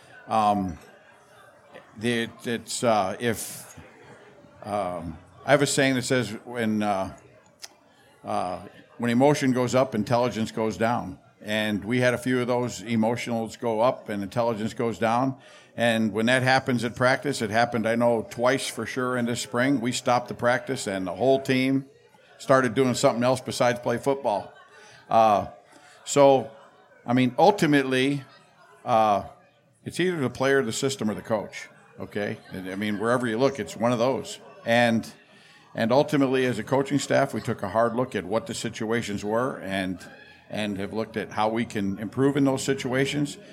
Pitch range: 110-130 Hz